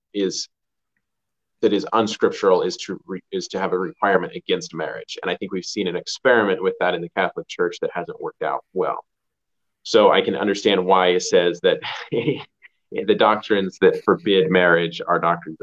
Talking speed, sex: 175 wpm, male